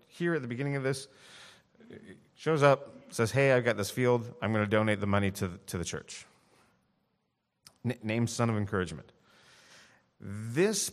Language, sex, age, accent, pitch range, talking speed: English, male, 30-49, American, 100-130 Hz, 155 wpm